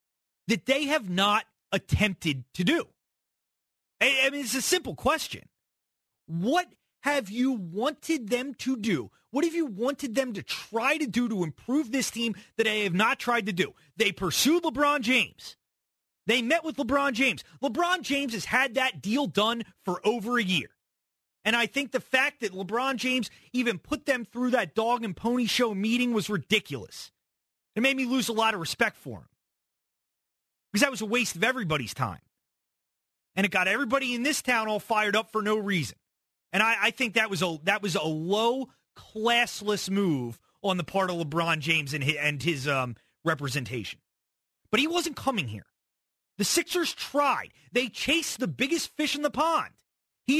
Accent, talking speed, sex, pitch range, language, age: American, 180 wpm, male, 195-270 Hz, English, 30-49